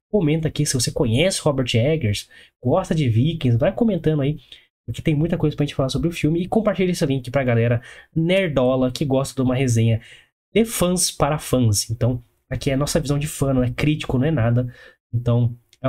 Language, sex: Portuguese, male